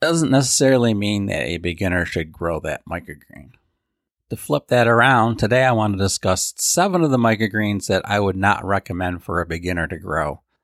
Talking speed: 185 wpm